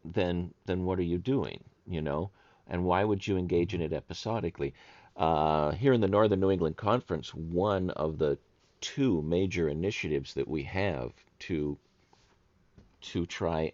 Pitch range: 75-95 Hz